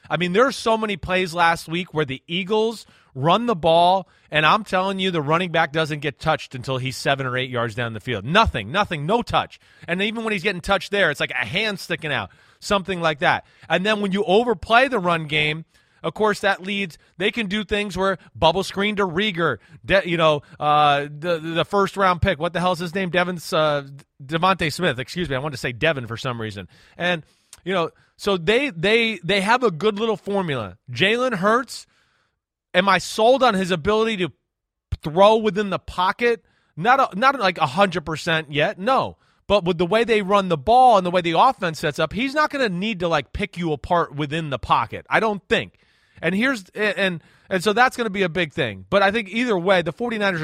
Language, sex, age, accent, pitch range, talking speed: English, male, 30-49, American, 155-210 Hz, 220 wpm